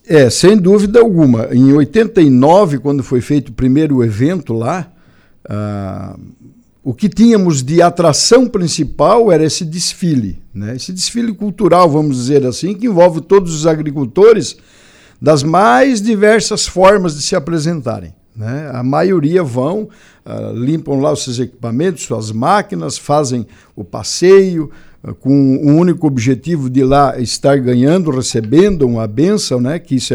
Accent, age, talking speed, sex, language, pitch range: Brazilian, 60-79, 140 wpm, male, Portuguese, 130-180 Hz